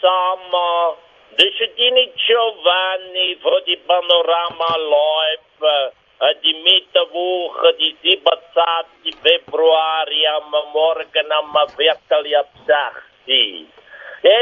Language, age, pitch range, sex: German, 60-79, 140-215 Hz, male